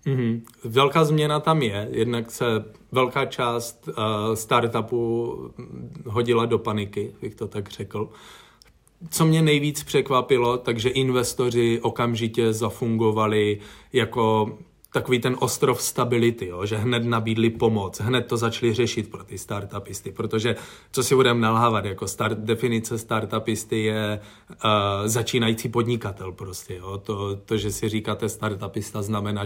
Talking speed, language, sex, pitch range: 130 wpm, Czech, male, 105-120 Hz